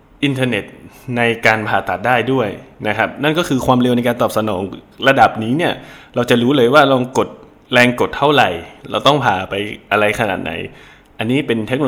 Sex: male